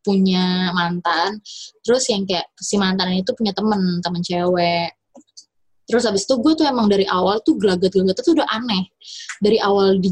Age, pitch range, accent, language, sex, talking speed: 20-39, 190-310 Hz, native, Indonesian, female, 165 wpm